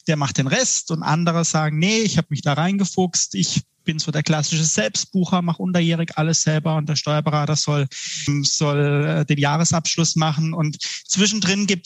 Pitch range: 155-185 Hz